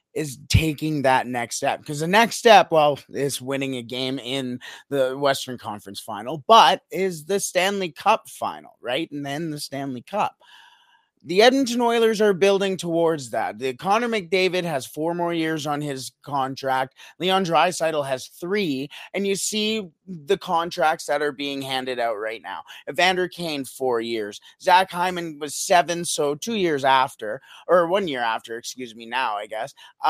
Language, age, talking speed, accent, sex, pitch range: English, 30-49, 170 wpm, American, male, 130-180 Hz